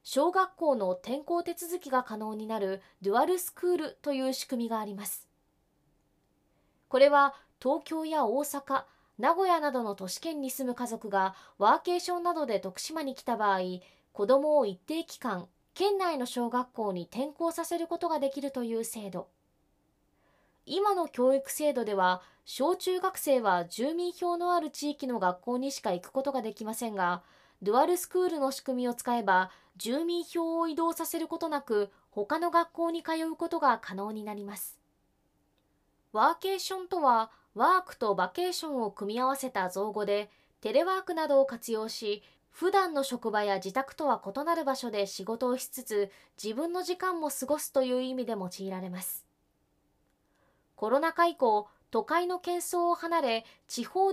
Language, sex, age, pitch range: Japanese, female, 20-39, 215-335 Hz